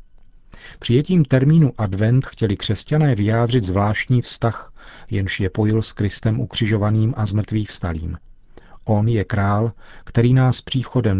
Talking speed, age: 125 wpm, 40-59